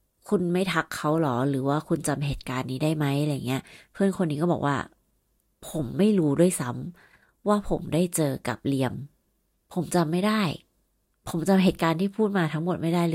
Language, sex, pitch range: Thai, female, 150-190 Hz